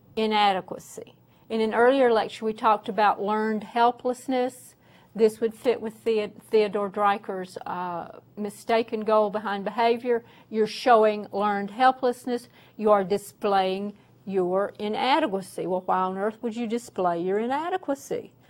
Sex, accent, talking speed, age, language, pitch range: female, American, 125 wpm, 50-69, English, 200-230 Hz